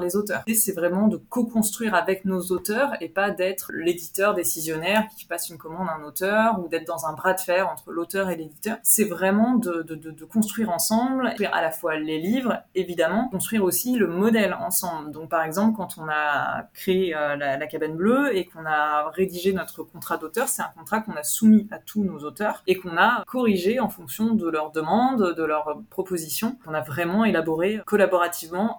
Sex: female